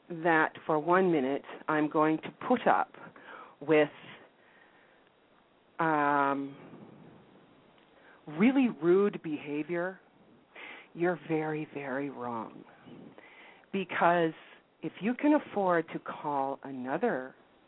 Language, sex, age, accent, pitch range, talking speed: English, female, 40-59, American, 155-220 Hz, 90 wpm